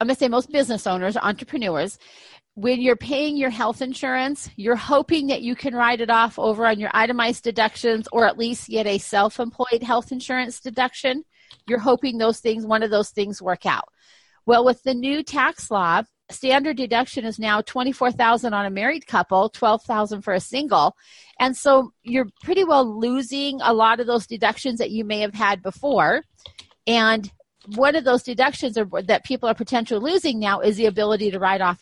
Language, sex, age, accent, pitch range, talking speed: English, female, 40-59, American, 220-265 Hz, 190 wpm